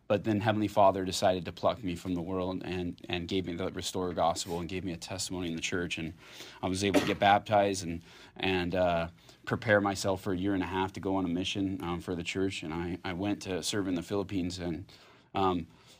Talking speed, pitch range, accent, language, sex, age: 240 wpm, 90-105 Hz, American, English, male, 30-49